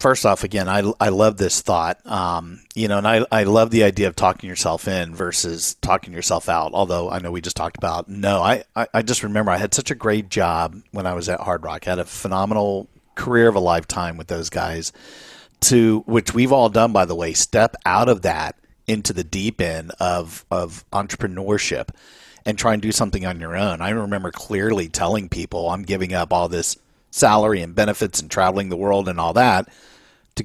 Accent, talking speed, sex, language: American, 215 wpm, male, English